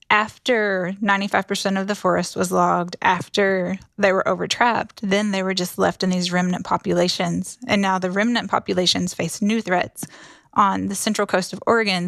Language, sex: English, female